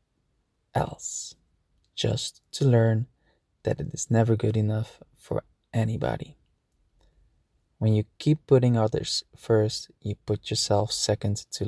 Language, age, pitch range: English, 20-39, 105-120 Hz